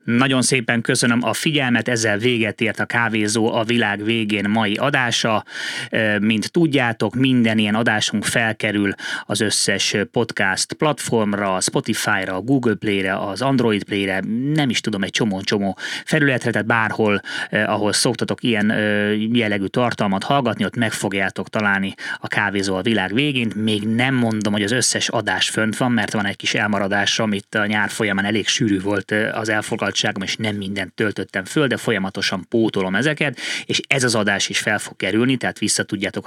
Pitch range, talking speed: 100-115 Hz, 160 wpm